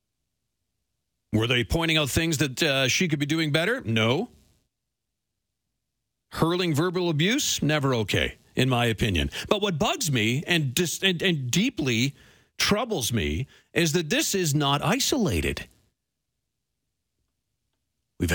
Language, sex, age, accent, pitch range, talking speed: English, male, 40-59, American, 130-185 Hz, 130 wpm